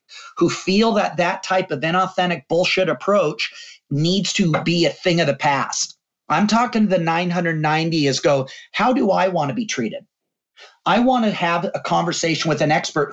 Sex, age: male, 40-59